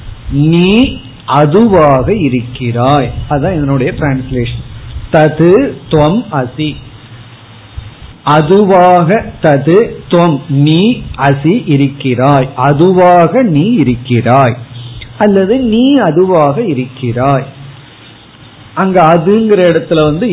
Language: Tamil